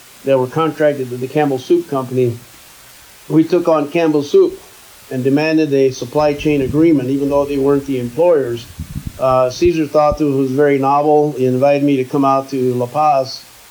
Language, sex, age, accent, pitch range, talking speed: English, male, 50-69, American, 130-150 Hz, 180 wpm